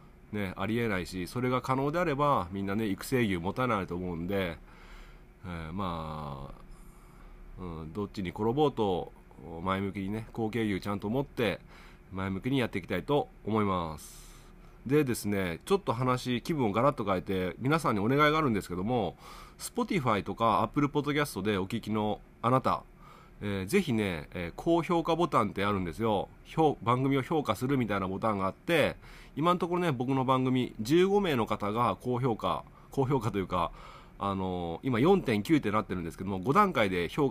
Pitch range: 95-135 Hz